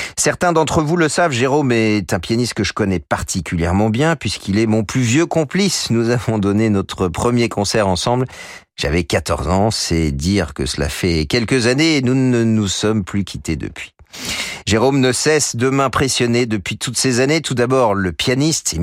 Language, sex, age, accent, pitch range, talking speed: French, male, 40-59, French, 90-125 Hz, 190 wpm